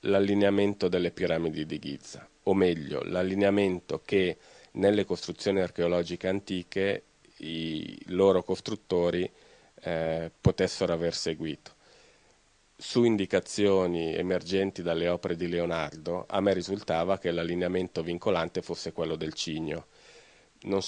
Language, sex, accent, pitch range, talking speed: Italian, male, native, 85-95 Hz, 110 wpm